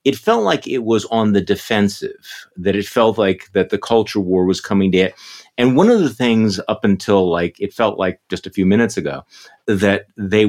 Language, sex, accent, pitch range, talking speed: English, male, American, 95-115 Hz, 215 wpm